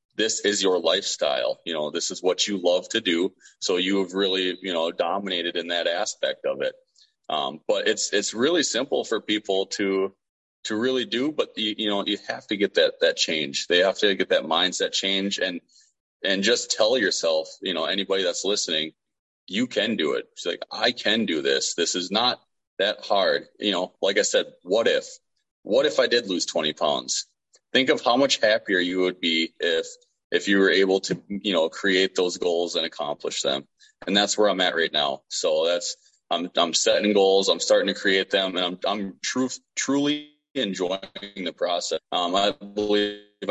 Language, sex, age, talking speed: English, male, 30-49, 200 wpm